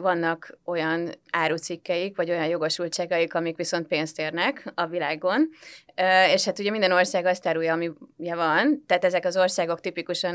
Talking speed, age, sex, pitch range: 150 wpm, 30-49, female, 165-185 Hz